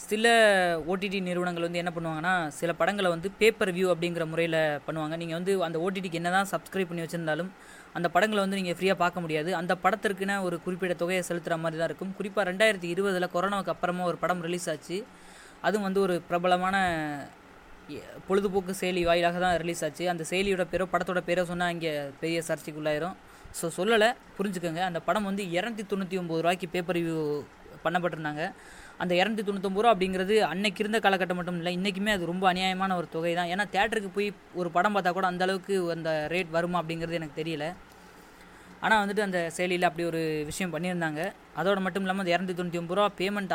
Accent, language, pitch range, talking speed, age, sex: native, Tamil, 170-195 Hz, 170 wpm, 20-39, female